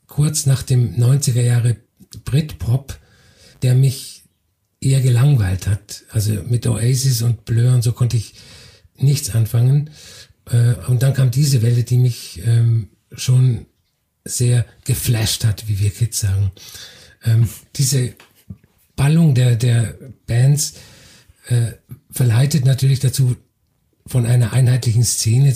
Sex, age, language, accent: male, 50-69, German, German